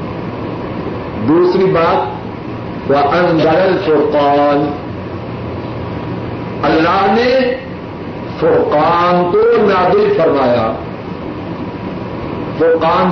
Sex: male